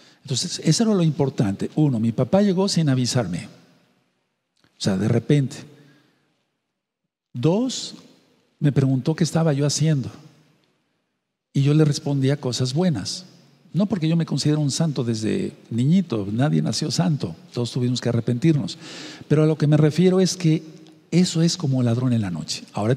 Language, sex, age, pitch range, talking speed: Spanish, male, 50-69, 130-170 Hz, 155 wpm